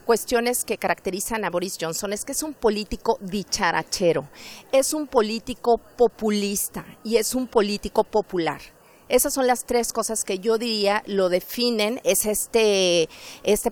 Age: 40-59